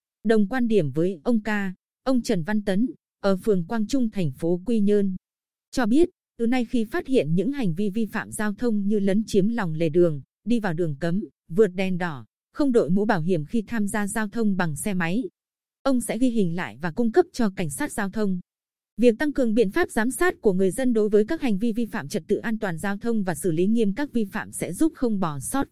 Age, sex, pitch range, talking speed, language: 20-39, female, 185-235 Hz, 245 wpm, Vietnamese